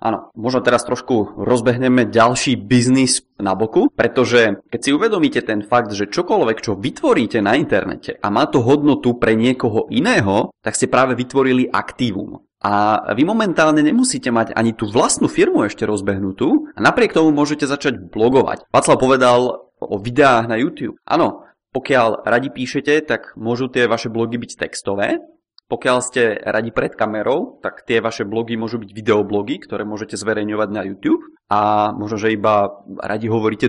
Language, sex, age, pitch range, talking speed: Czech, male, 20-39, 110-145 Hz, 160 wpm